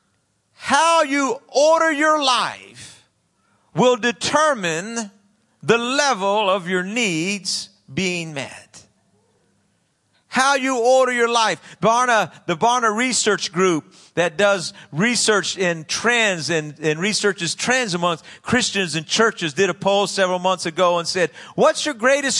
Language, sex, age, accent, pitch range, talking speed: English, male, 40-59, American, 175-250 Hz, 130 wpm